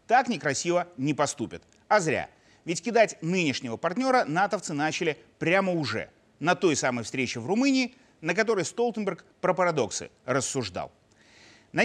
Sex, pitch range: male, 145-215 Hz